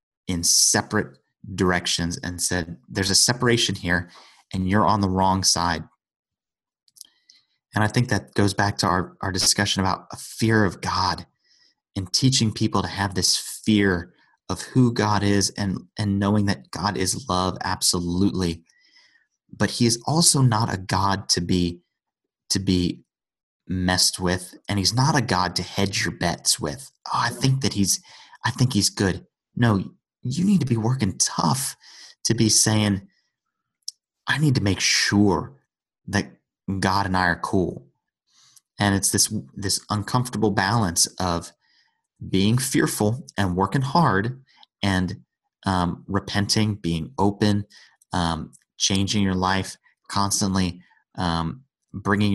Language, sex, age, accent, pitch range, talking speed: English, male, 30-49, American, 90-105 Hz, 145 wpm